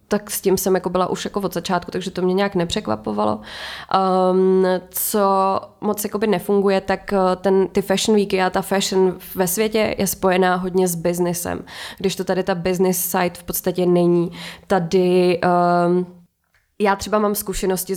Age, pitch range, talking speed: 20-39, 175-195 Hz, 165 wpm